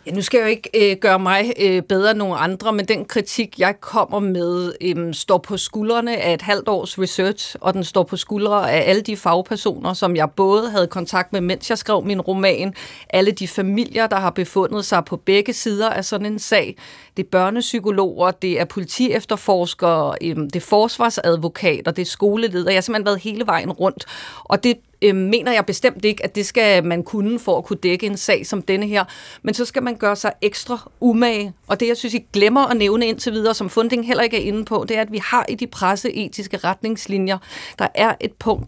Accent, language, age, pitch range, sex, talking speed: native, Danish, 30-49, 185-230 Hz, female, 220 wpm